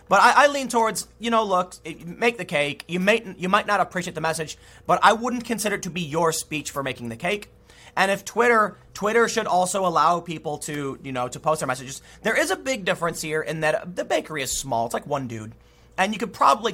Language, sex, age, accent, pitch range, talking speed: English, male, 30-49, American, 140-205 Hz, 240 wpm